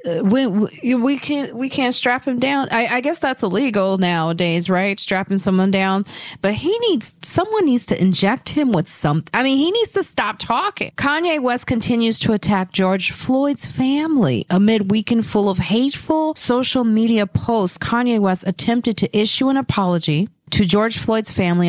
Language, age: English, 40-59